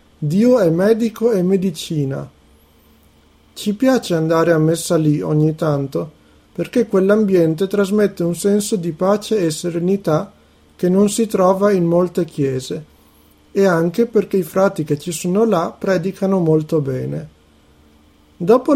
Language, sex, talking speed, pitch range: Italian, male, 135 wpm, 155-210 Hz